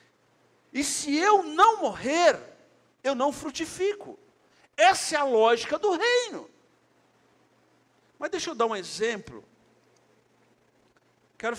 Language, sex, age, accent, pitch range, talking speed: Portuguese, male, 50-69, Brazilian, 200-300 Hz, 110 wpm